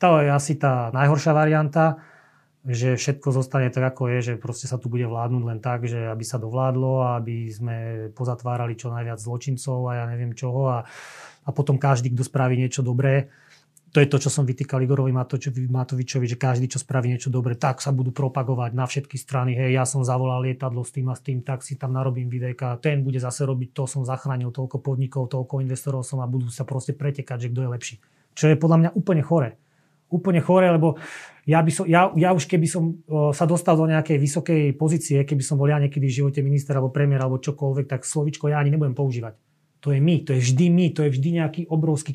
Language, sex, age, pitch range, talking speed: Slovak, male, 30-49, 130-155 Hz, 215 wpm